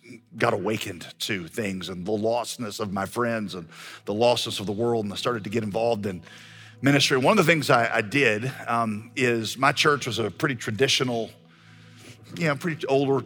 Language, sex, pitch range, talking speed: English, male, 115-150 Hz, 195 wpm